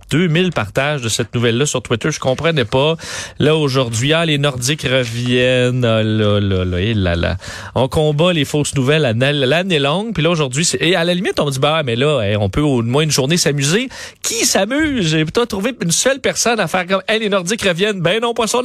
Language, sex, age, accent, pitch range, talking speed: French, male, 40-59, Canadian, 135-200 Hz, 220 wpm